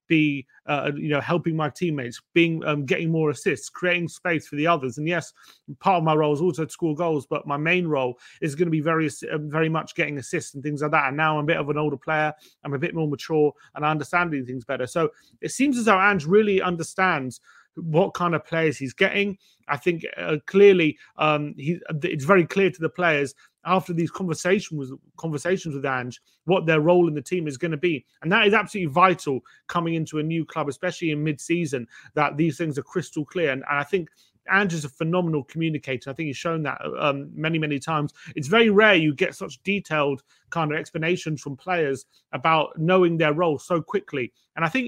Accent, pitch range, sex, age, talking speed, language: British, 145-175 Hz, male, 30-49, 215 wpm, English